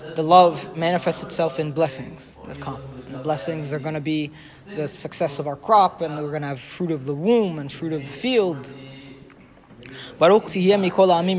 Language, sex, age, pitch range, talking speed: English, male, 20-39, 155-190 Hz, 185 wpm